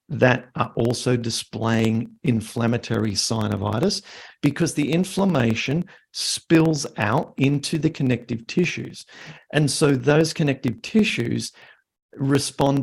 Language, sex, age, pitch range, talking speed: English, male, 50-69, 115-145 Hz, 100 wpm